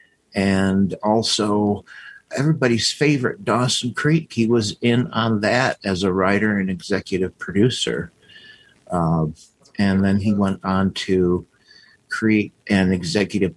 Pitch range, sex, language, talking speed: 95-115 Hz, male, English, 120 wpm